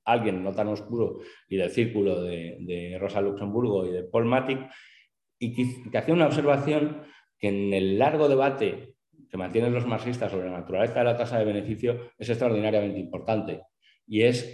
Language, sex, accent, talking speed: Spanish, male, Spanish, 180 wpm